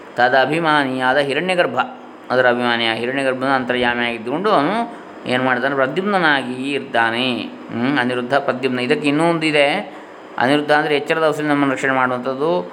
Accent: native